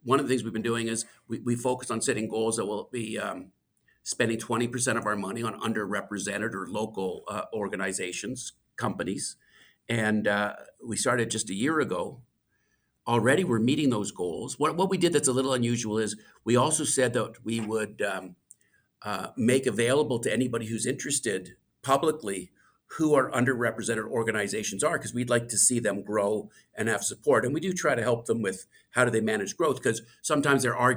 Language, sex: English, male